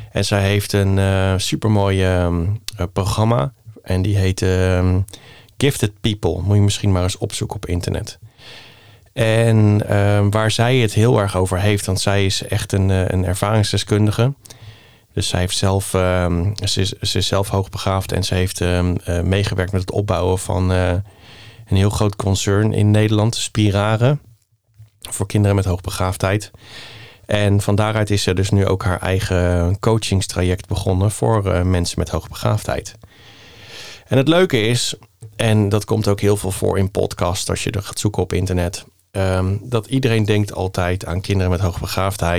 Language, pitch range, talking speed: Dutch, 95-110 Hz, 155 wpm